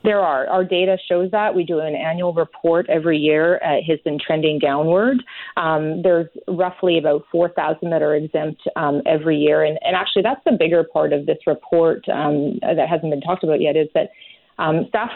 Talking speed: 200 wpm